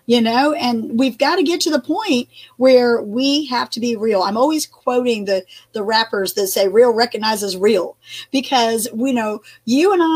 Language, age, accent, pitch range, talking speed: English, 40-59, American, 215-260 Hz, 195 wpm